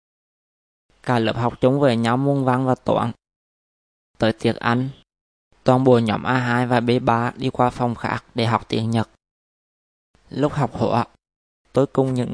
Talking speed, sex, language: 165 wpm, male, Vietnamese